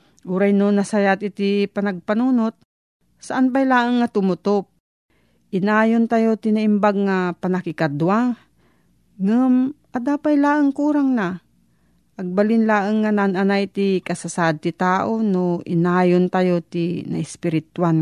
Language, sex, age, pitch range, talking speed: Filipino, female, 40-59, 170-215 Hz, 105 wpm